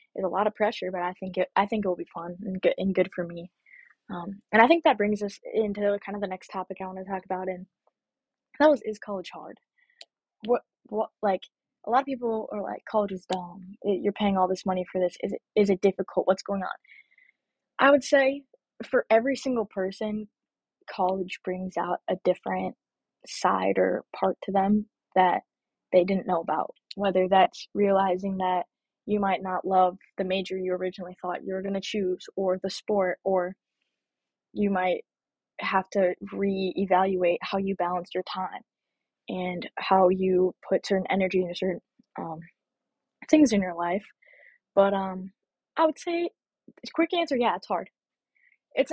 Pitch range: 185-215 Hz